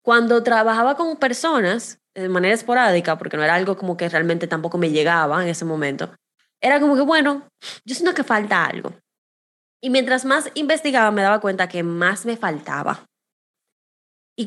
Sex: female